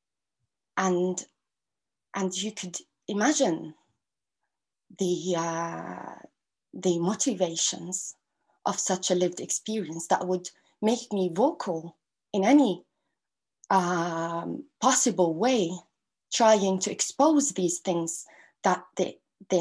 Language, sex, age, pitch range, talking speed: English, female, 20-39, 180-250 Hz, 100 wpm